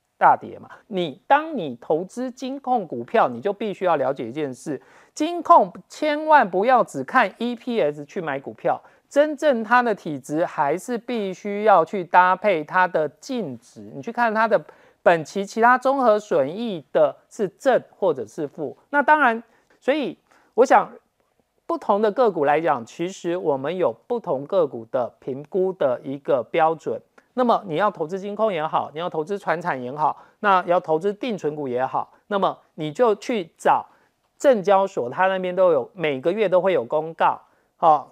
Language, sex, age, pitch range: Chinese, male, 50-69, 170-240 Hz